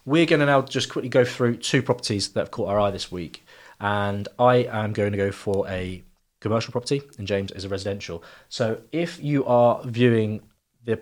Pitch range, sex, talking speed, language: 110-135 Hz, male, 205 wpm, English